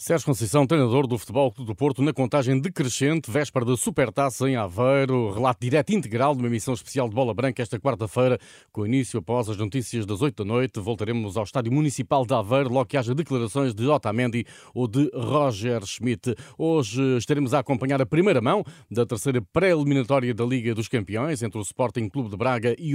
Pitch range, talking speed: 120-140 Hz, 190 wpm